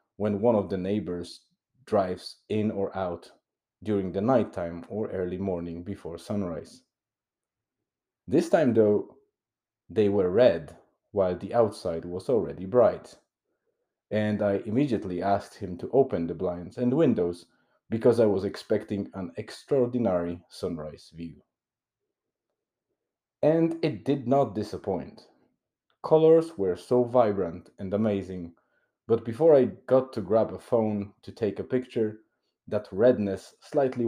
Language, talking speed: English, 130 wpm